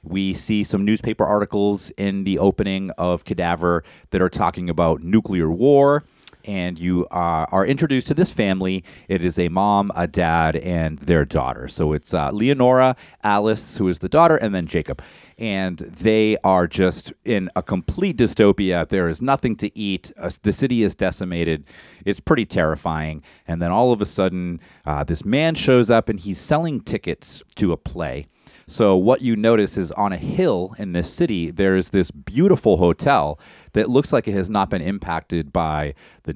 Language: English